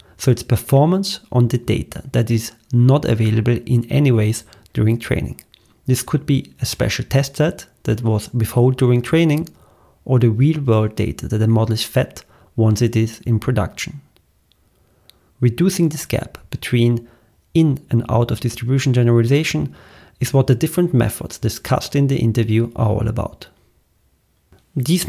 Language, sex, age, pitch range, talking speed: English, male, 40-59, 110-135 Hz, 155 wpm